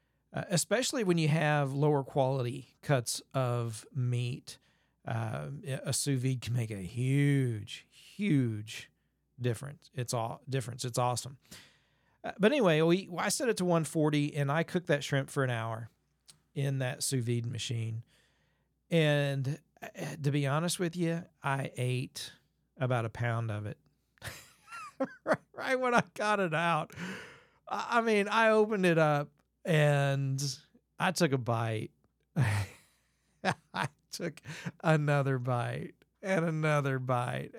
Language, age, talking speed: English, 40-59, 130 wpm